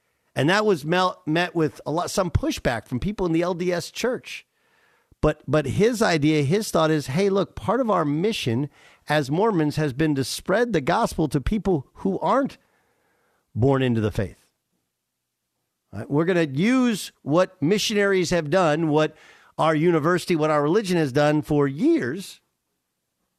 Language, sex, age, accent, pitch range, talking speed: English, male, 50-69, American, 125-180 Hz, 160 wpm